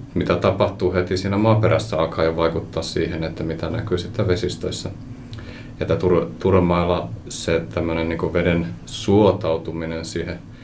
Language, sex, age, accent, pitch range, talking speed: Finnish, male, 30-49, native, 85-110 Hz, 115 wpm